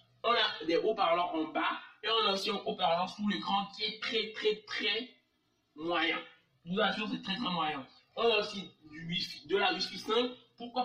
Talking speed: 200 wpm